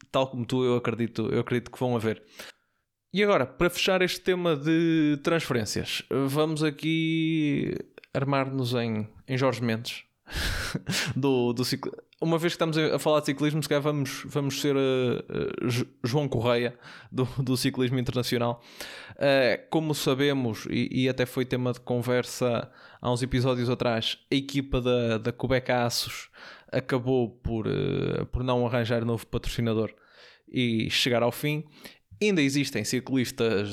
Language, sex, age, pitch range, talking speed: Portuguese, male, 20-39, 120-145 Hz, 150 wpm